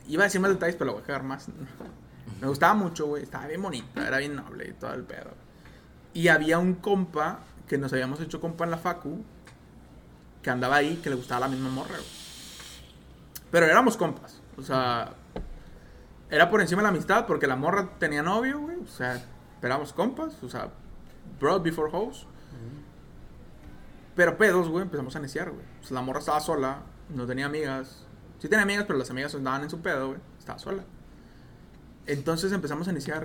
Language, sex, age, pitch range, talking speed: Spanish, male, 20-39, 130-190 Hz, 195 wpm